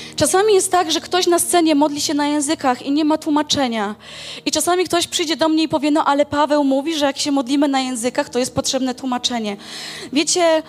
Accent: native